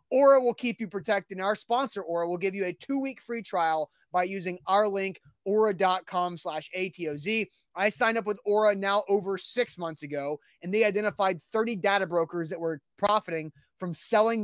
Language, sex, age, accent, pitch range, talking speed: English, male, 30-49, American, 175-220 Hz, 180 wpm